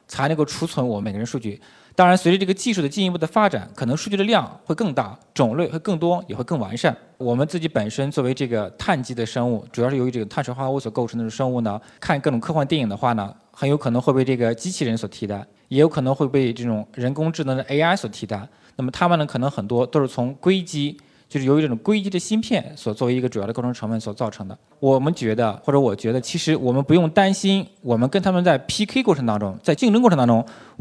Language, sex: Chinese, male